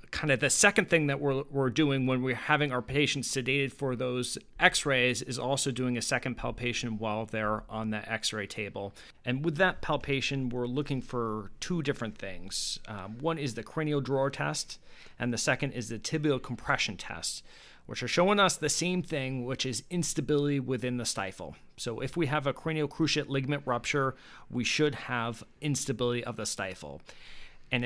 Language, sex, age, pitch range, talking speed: English, male, 30-49, 120-150 Hz, 185 wpm